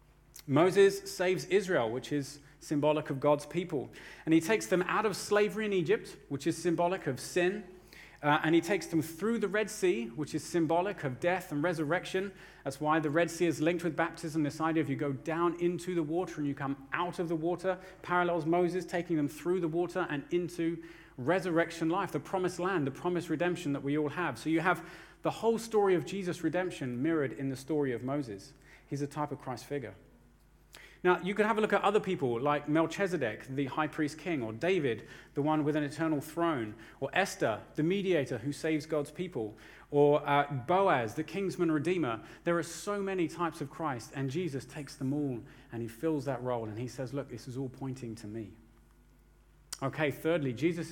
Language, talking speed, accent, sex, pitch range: English, 205 wpm, British, male, 145-180 Hz